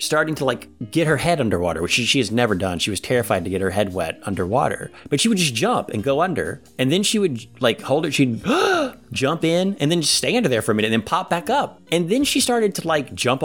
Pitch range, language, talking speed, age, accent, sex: 105-150 Hz, English, 270 wpm, 30-49, American, male